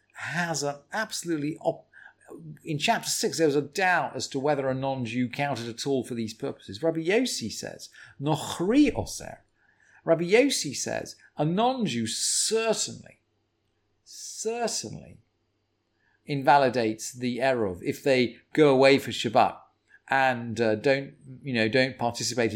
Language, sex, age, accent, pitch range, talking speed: English, male, 40-59, British, 130-215 Hz, 135 wpm